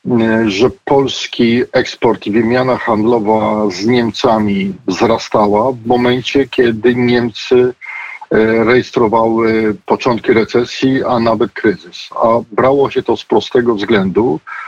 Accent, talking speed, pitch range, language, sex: native, 105 wpm, 115-125 Hz, Polish, male